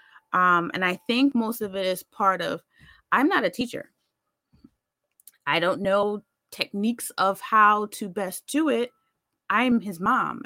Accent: American